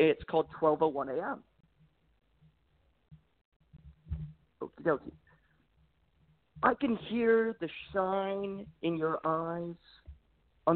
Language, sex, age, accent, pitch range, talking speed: English, male, 40-59, American, 145-220 Hz, 75 wpm